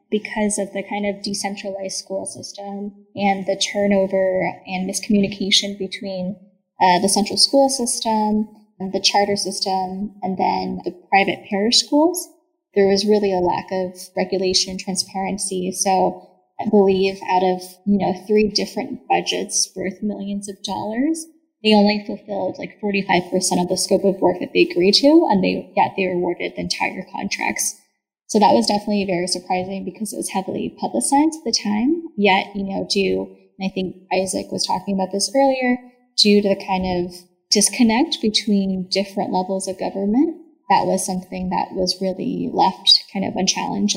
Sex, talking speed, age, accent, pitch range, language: female, 170 wpm, 20-39, American, 190-215 Hz, English